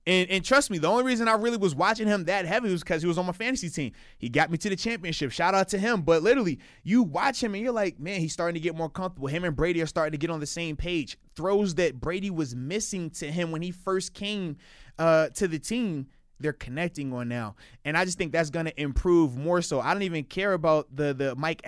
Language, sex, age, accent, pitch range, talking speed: English, male, 20-39, American, 160-205 Hz, 265 wpm